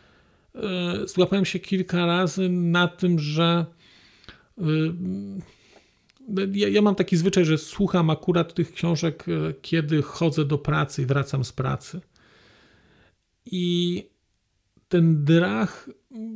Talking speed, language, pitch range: 100 wpm, Polish, 150-185 Hz